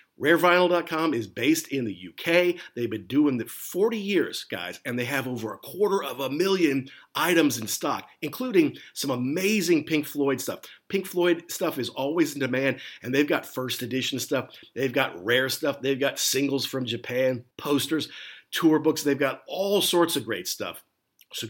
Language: English